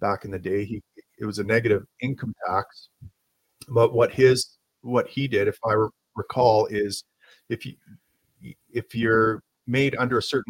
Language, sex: English, male